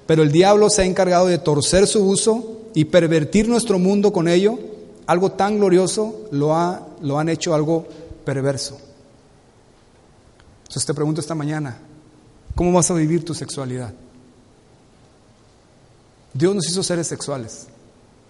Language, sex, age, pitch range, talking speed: Spanish, male, 40-59, 130-185 Hz, 135 wpm